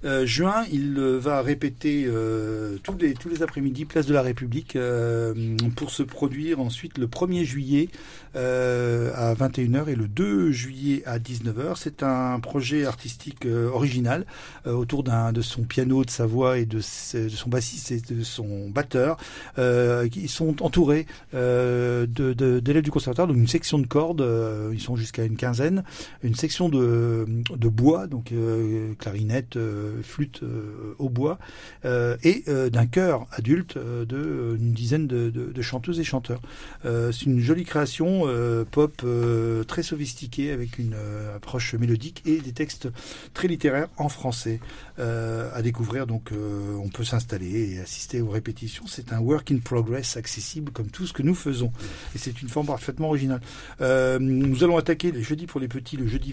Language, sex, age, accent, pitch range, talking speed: French, male, 50-69, French, 115-145 Hz, 180 wpm